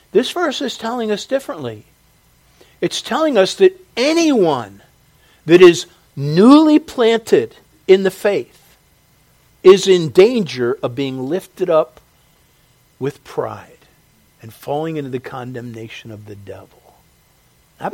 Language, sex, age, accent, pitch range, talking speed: English, male, 50-69, American, 120-190 Hz, 120 wpm